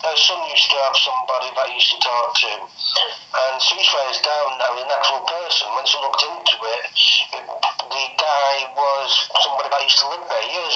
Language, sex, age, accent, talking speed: English, male, 40-59, British, 210 wpm